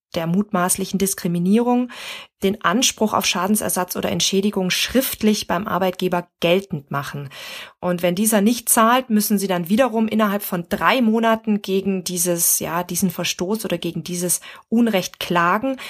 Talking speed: 140 wpm